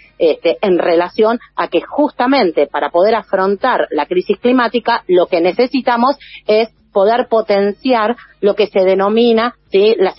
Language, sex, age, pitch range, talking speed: Spanish, female, 40-59, 190-265 Hz, 140 wpm